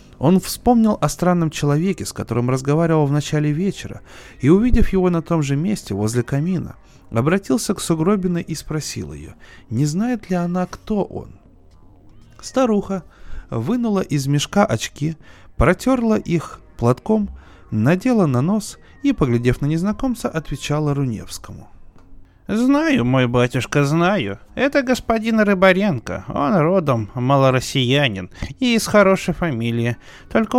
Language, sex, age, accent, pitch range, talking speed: Russian, male, 20-39, native, 120-190 Hz, 125 wpm